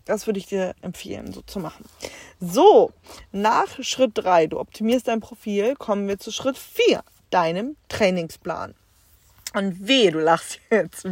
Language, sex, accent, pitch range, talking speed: German, female, German, 185-235 Hz, 150 wpm